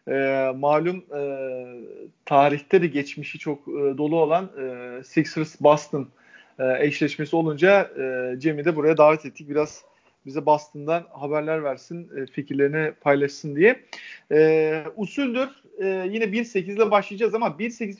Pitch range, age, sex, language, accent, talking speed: 150-220 Hz, 40-59, male, Turkish, native, 130 wpm